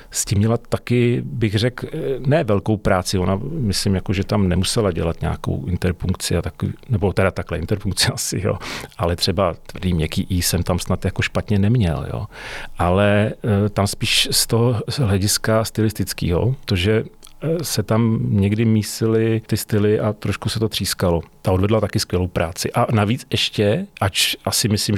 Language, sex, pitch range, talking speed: Czech, male, 100-110 Hz, 160 wpm